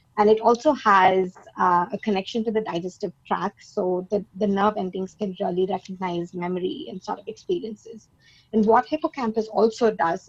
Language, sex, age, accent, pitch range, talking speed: English, female, 20-39, Indian, 190-215 Hz, 170 wpm